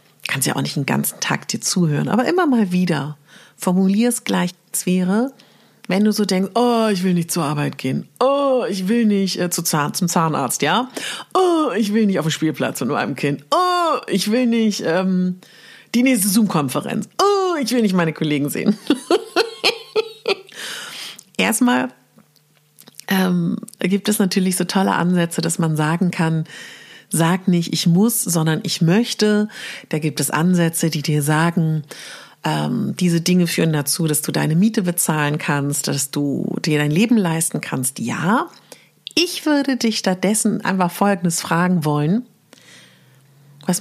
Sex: female